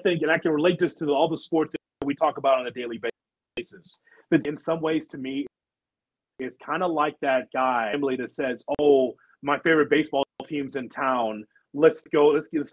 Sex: male